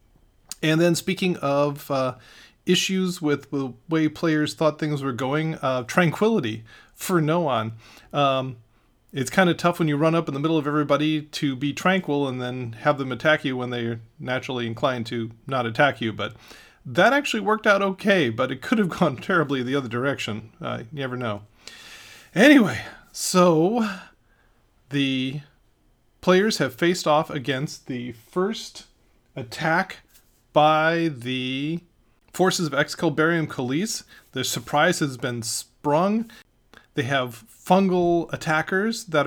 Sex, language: male, English